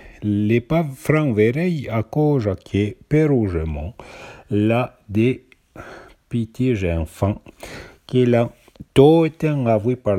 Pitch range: 95-130 Hz